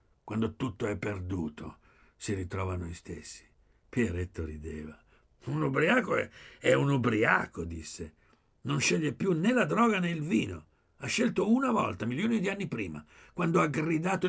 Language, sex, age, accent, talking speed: Italian, male, 60-79, native, 155 wpm